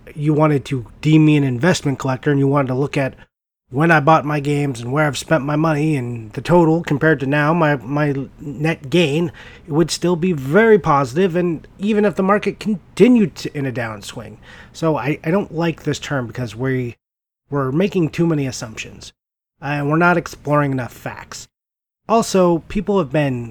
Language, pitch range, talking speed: English, 130-165 Hz, 190 wpm